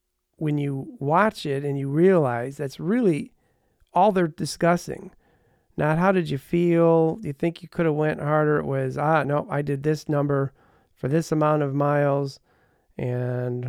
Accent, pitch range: American, 125-160 Hz